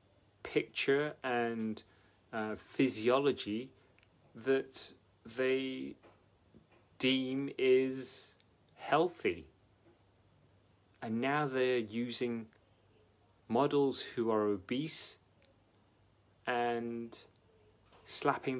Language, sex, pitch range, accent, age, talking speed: English, male, 100-120 Hz, British, 30-49, 60 wpm